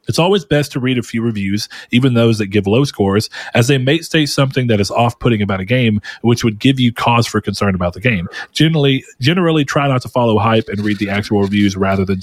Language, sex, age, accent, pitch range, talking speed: English, male, 30-49, American, 100-140 Hz, 240 wpm